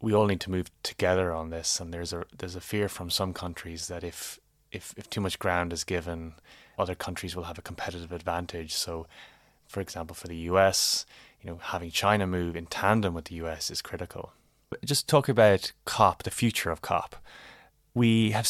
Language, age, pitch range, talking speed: English, 20-39, 85-105 Hz, 200 wpm